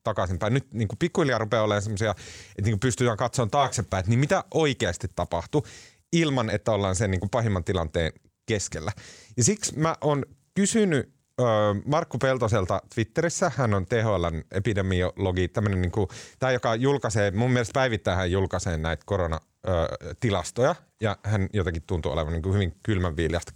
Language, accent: Finnish, native